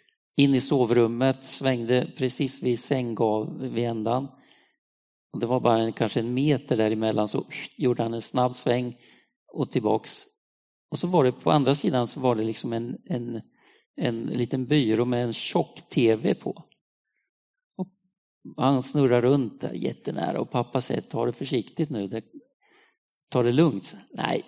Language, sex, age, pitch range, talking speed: Swedish, male, 50-69, 115-155 Hz, 145 wpm